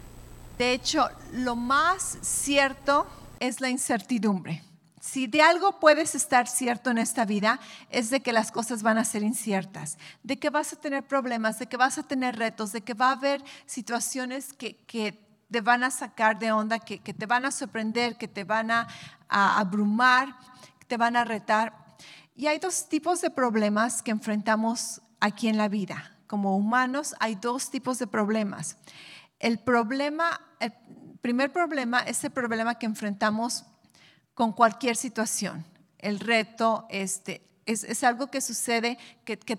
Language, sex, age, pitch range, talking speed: English, female, 40-59, 215-255 Hz, 170 wpm